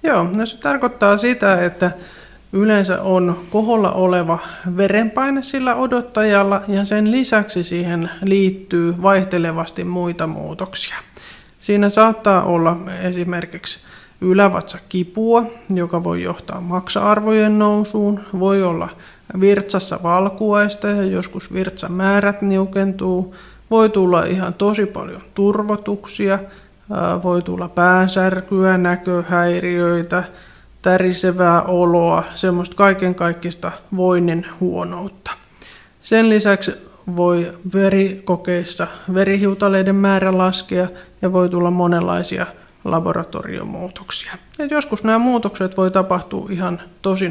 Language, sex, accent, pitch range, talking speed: Finnish, male, native, 180-205 Hz, 95 wpm